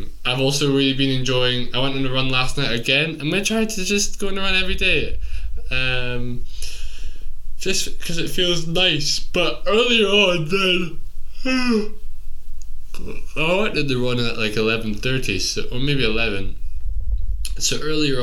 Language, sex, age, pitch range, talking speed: English, male, 10-29, 110-165 Hz, 160 wpm